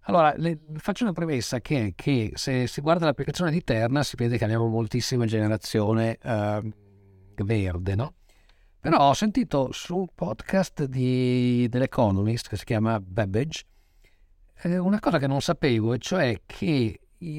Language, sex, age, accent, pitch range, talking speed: English, male, 50-69, Italian, 110-145 Hz, 150 wpm